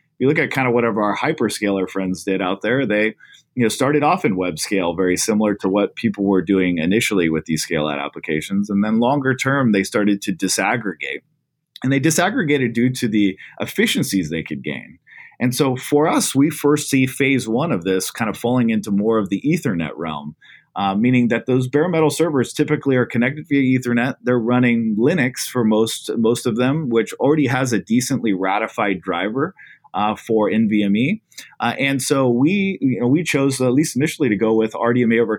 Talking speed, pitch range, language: 195 wpm, 100-130 Hz, English